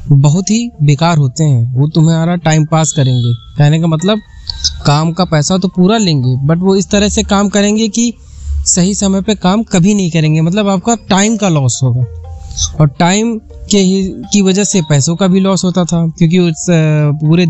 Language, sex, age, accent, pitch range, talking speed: Hindi, male, 20-39, native, 145-195 Hz, 95 wpm